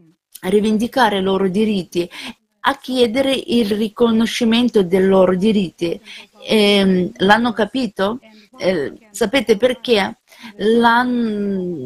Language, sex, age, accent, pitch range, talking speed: Italian, female, 40-59, native, 205-240 Hz, 90 wpm